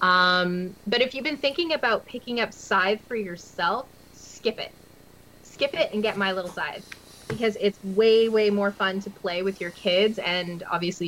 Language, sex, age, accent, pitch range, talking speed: English, female, 20-39, American, 185-230 Hz, 185 wpm